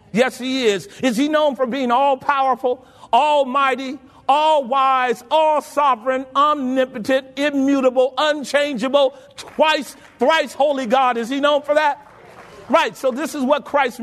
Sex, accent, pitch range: male, American, 245-300 Hz